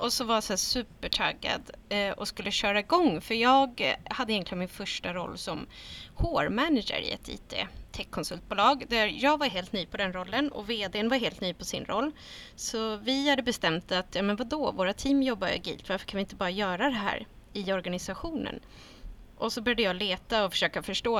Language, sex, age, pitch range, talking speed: Swedish, female, 30-49, 190-245 Hz, 195 wpm